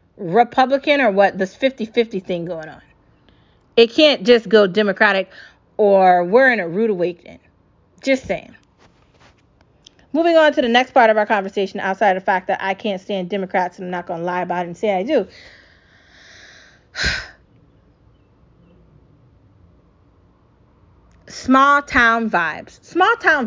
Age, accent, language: 30-49, American, English